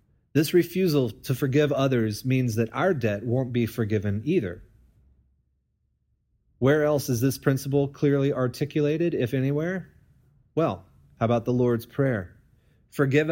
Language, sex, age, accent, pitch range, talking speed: English, male, 30-49, American, 110-145 Hz, 130 wpm